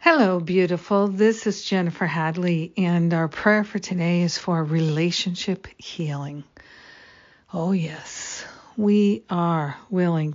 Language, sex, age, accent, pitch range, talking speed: English, female, 60-79, American, 165-190 Hz, 115 wpm